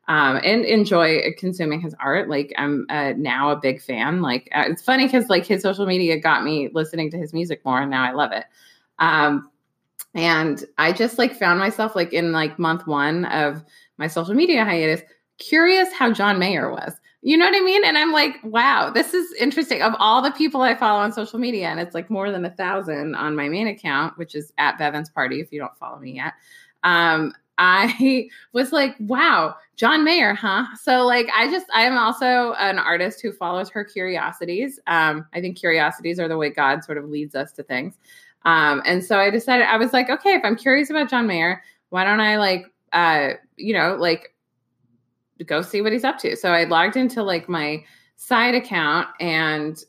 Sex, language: female, English